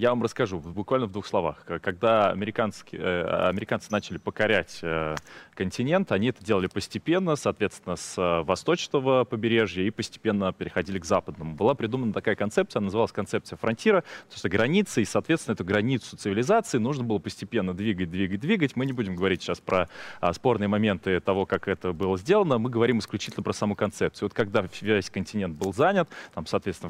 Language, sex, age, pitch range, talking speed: Russian, male, 20-39, 95-130 Hz, 175 wpm